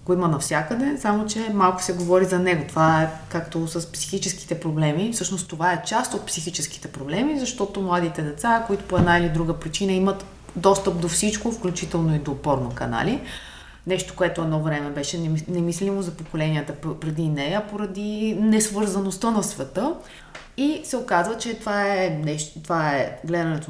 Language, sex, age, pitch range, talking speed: Bulgarian, female, 20-39, 165-215 Hz, 160 wpm